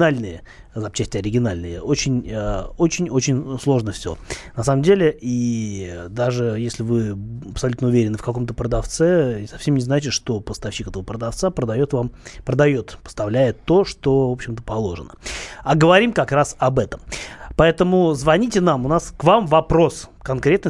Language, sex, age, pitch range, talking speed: Russian, male, 30-49, 110-150 Hz, 140 wpm